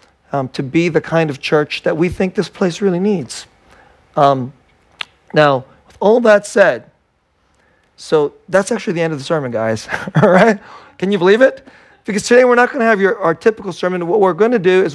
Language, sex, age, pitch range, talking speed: English, male, 40-59, 155-205 Hz, 210 wpm